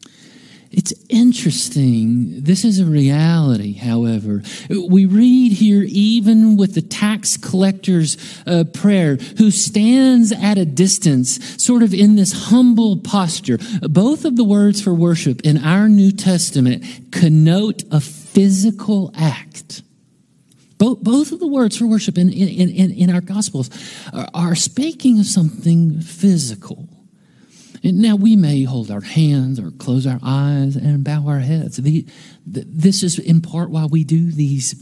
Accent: American